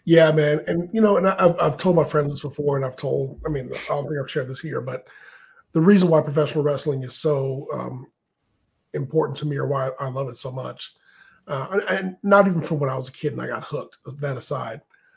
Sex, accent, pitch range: male, American, 135-160 Hz